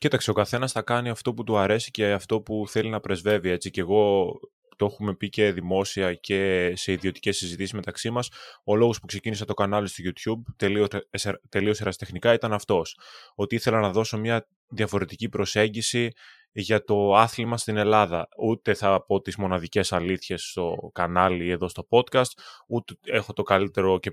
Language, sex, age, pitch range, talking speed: Greek, male, 20-39, 100-120 Hz, 170 wpm